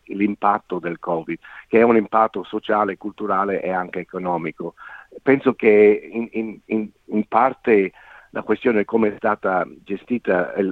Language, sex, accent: Italian, male, native